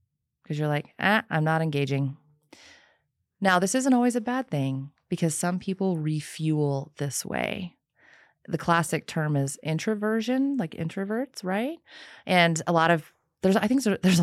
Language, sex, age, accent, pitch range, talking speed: English, female, 30-49, American, 150-195 Hz, 150 wpm